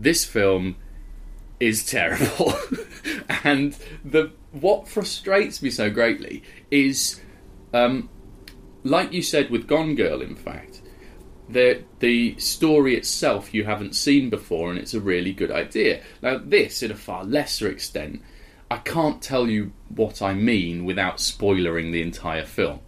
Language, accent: English, British